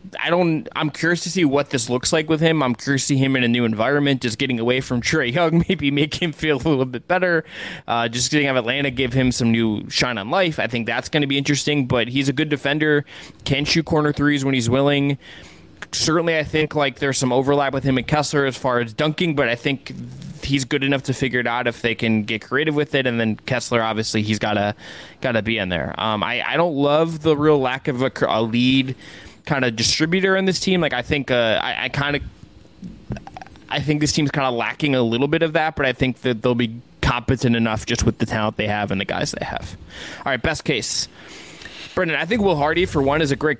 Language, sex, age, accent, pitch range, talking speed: English, male, 20-39, American, 125-155 Hz, 245 wpm